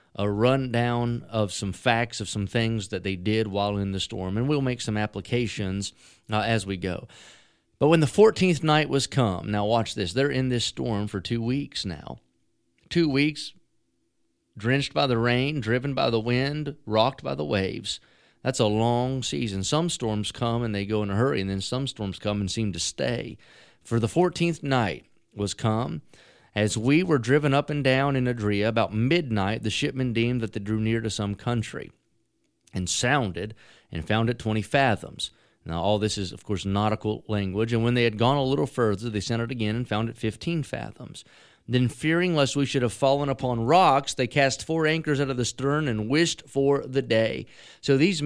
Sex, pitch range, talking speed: male, 110-140 Hz, 200 wpm